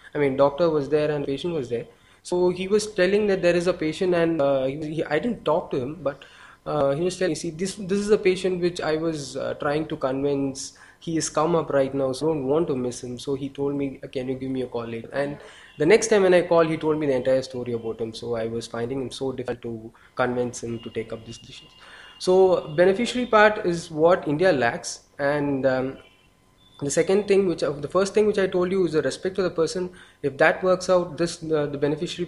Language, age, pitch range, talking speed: English, 20-39, 135-175 Hz, 250 wpm